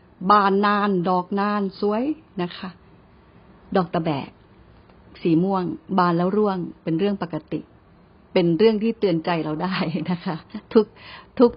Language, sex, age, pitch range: Thai, female, 70-89, 175-225 Hz